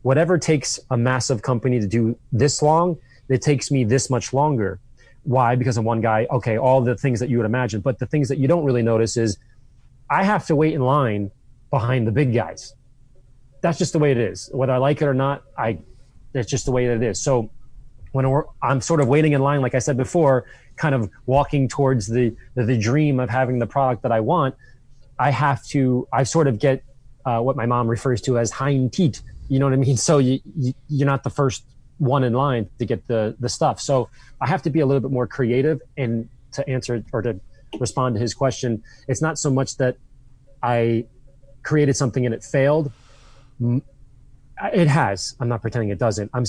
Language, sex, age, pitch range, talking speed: English, male, 30-49, 120-140 Hz, 215 wpm